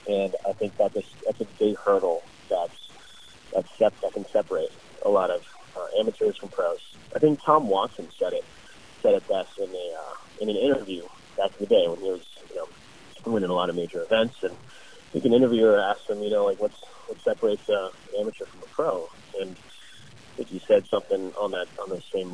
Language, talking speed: English, 220 wpm